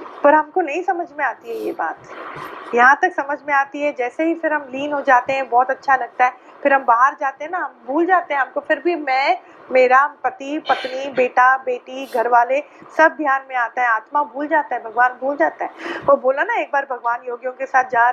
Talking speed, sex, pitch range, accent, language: 180 wpm, female, 260-335 Hz, native, Hindi